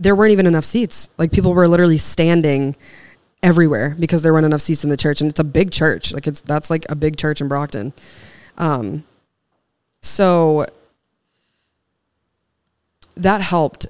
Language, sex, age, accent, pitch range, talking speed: English, female, 20-39, American, 140-160 Hz, 160 wpm